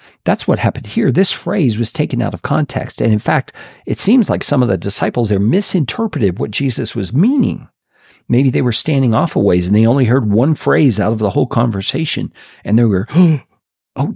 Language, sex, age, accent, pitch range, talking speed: English, male, 50-69, American, 105-145 Hz, 210 wpm